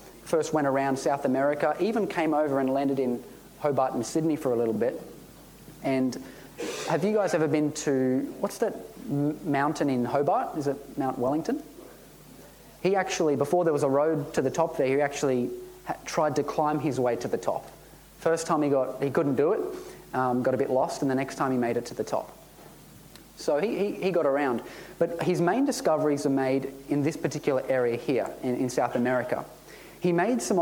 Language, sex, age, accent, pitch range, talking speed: English, male, 30-49, Australian, 135-165 Hz, 200 wpm